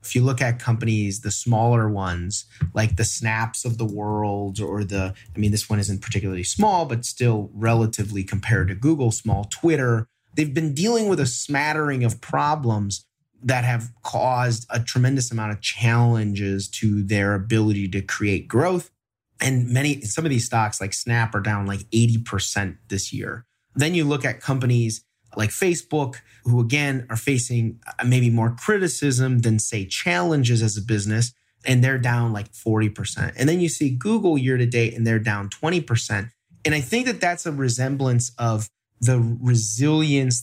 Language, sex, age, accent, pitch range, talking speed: English, male, 30-49, American, 110-130 Hz, 170 wpm